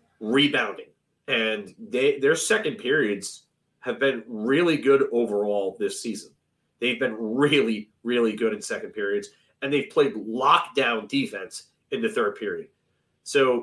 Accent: American